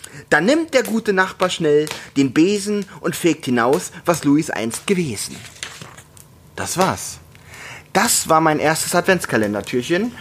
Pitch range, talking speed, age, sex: 130-185 Hz, 130 wpm, 30-49, male